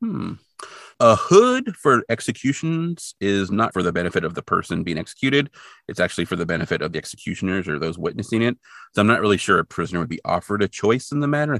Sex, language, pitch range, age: male, English, 95-140 Hz, 30-49